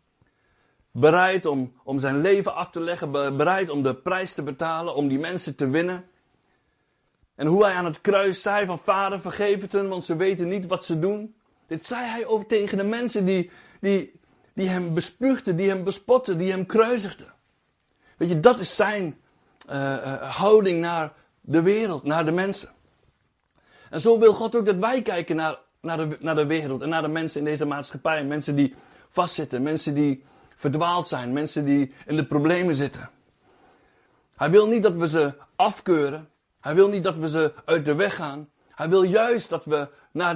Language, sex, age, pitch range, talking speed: Dutch, male, 60-79, 150-195 Hz, 190 wpm